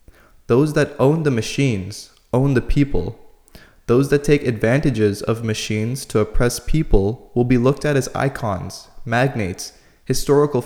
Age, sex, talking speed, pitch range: 20-39, male, 140 wpm, 115-145 Hz